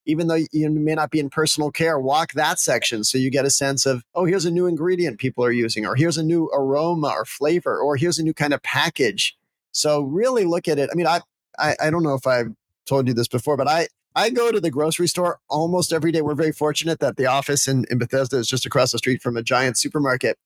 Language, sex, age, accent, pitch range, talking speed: English, male, 40-59, American, 130-165 Hz, 255 wpm